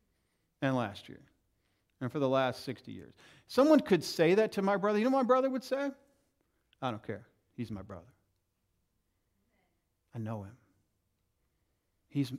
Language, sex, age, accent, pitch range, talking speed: English, male, 50-69, American, 115-175 Hz, 160 wpm